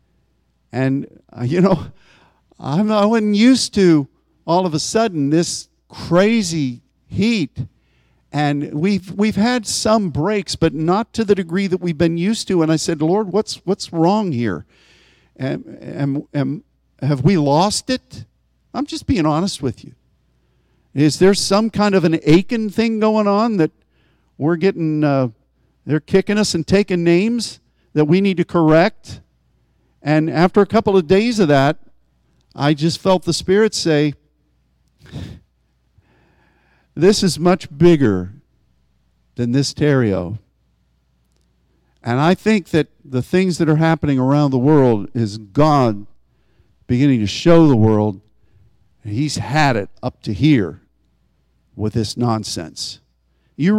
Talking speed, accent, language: 140 wpm, American, English